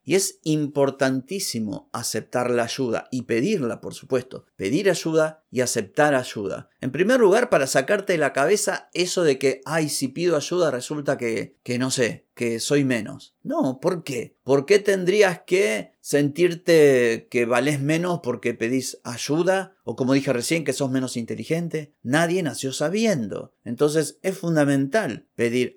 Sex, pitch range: male, 125-165 Hz